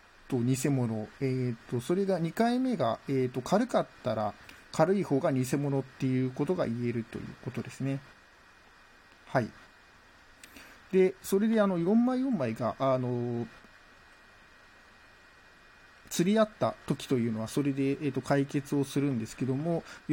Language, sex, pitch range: Japanese, male, 125-185 Hz